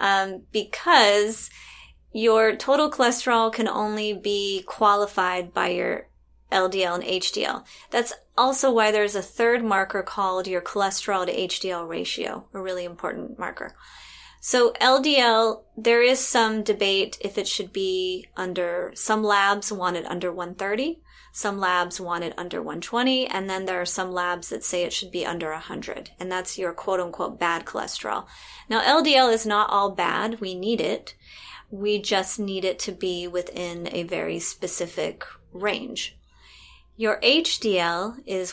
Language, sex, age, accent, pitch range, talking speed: English, female, 30-49, American, 185-225 Hz, 150 wpm